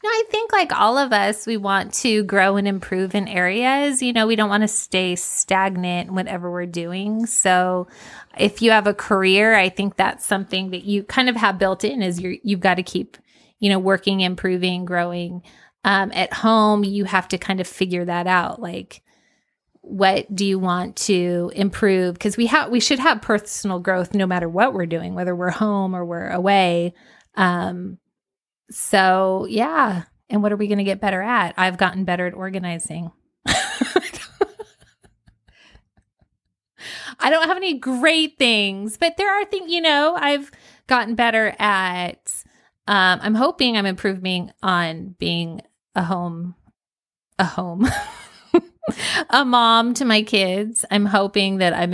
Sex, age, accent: female, 20-39, American